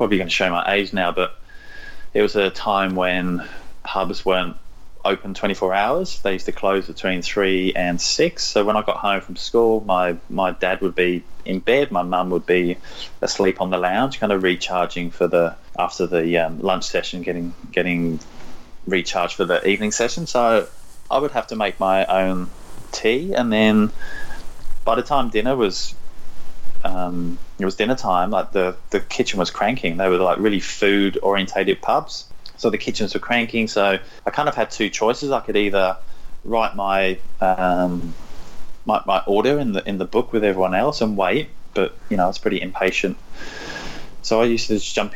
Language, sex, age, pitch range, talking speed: English, male, 20-39, 90-115 Hz, 190 wpm